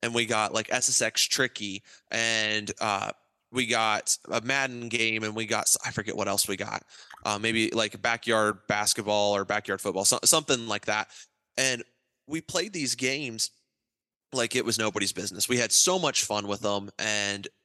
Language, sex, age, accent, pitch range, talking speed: English, male, 20-39, American, 105-120 Hz, 175 wpm